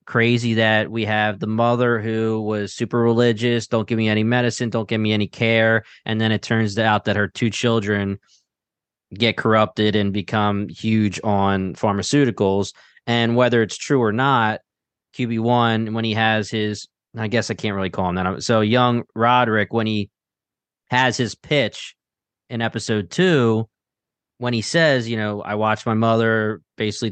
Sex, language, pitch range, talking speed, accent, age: male, English, 105-125 Hz, 170 wpm, American, 20-39